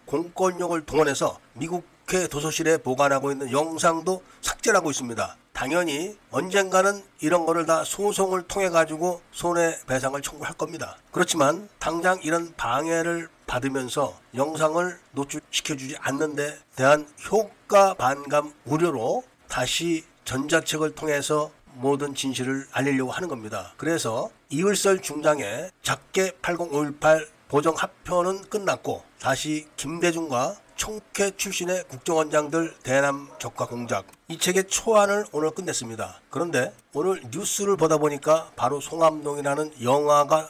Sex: male